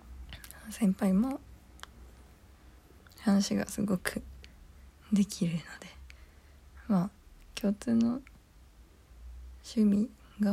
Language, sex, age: Japanese, female, 20-39